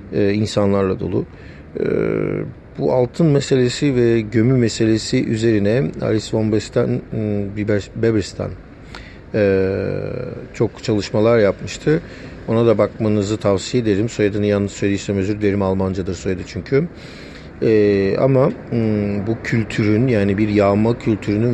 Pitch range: 105-120 Hz